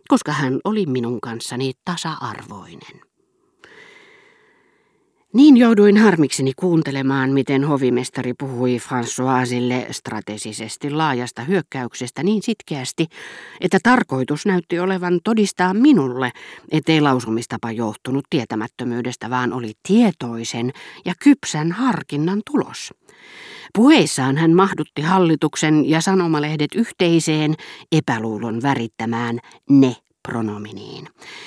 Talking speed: 90 wpm